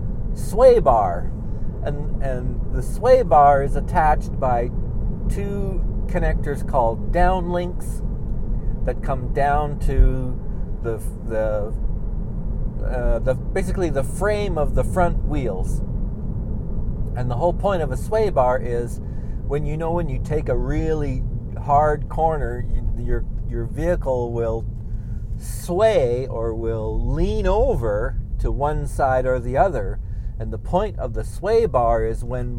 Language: English